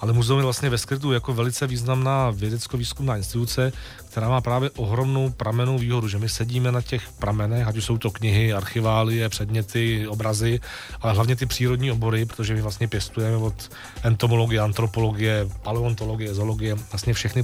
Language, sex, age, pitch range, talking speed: Czech, male, 40-59, 110-125 Hz, 160 wpm